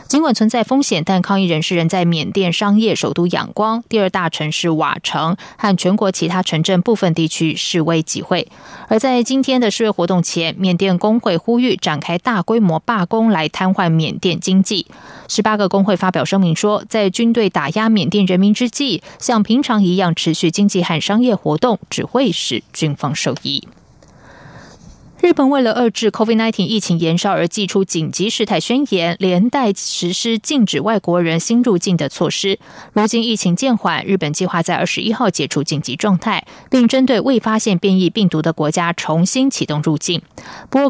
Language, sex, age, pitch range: Chinese, female, 20-39, 170-220 Hz